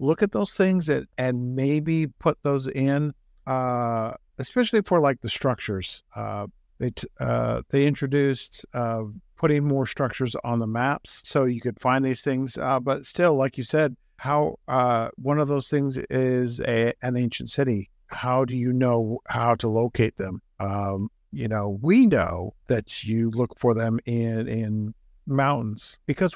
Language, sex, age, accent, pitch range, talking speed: English, male, 50-69, American, 115-145 Hz, 170 wpm